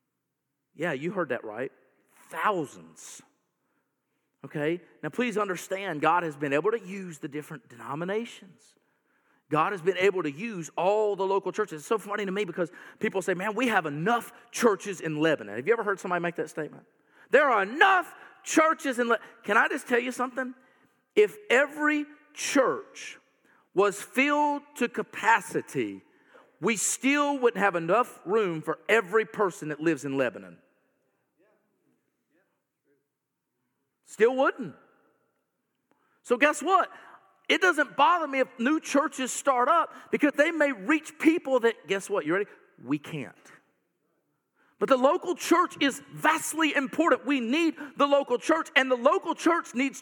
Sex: male